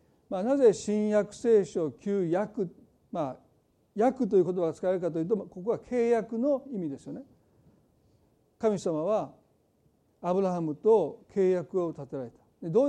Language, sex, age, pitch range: Japanese, male, 50-69, 170-235 Hz